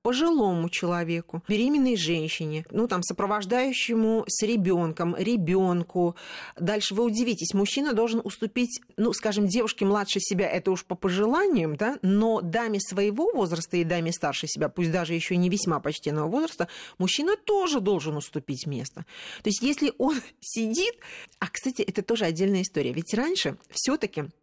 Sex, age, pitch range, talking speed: female, 40-59, 180-250 Hz, 145 wpm